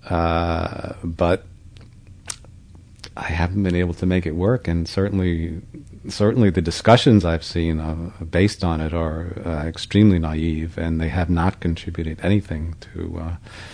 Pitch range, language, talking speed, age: 85-95 Hz, English, 145 wpm, 40-59